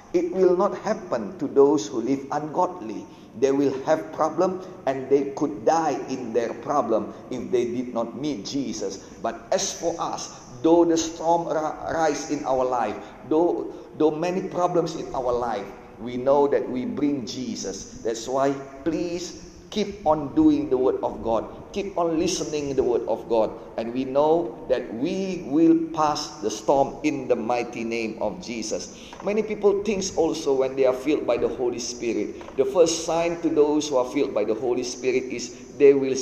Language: Indonesian